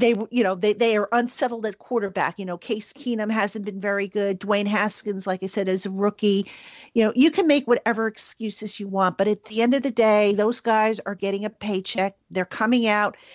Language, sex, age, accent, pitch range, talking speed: English, female, 50-69, American, 205-240 Hz, 225 wpm